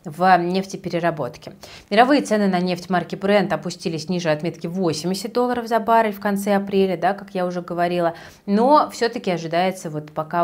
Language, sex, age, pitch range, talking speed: Russian, female, 30-49, 160-200 Hz, 160 wpm